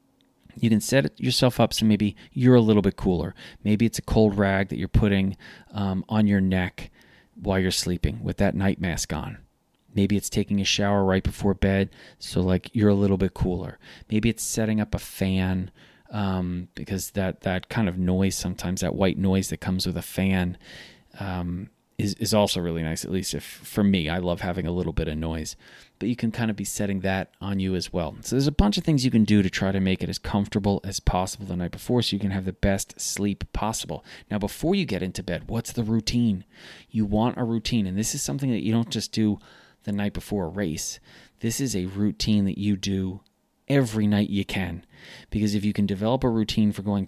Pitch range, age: 95-110 Hz, 30-49